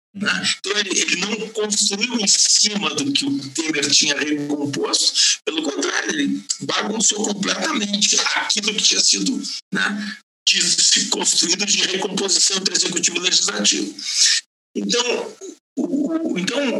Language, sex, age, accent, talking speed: Portuguese, male, 60-79, Brazilian, 120 wpm